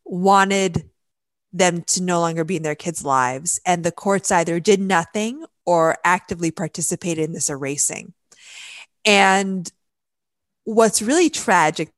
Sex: female